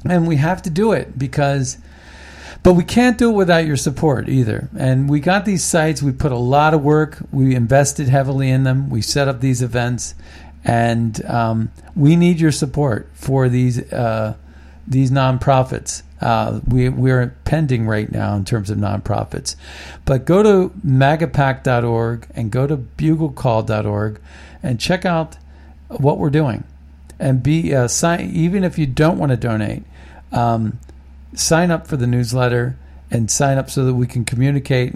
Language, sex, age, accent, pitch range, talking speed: English, male, 50-69, American, 105-140 Hz, 165 wpm